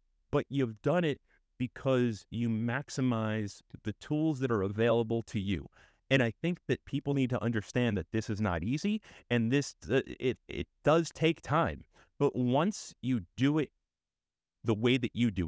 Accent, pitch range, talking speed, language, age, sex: American, 105-135 Hz, 175 wpm, English, 30-49, male